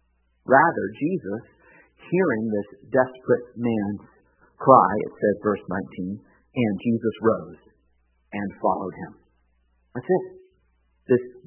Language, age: English, 50-69